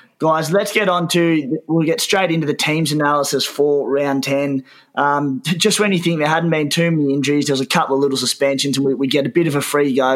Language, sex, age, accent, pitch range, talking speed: English, male, 20-39, Australian, 130-150 Hz, 255 wpm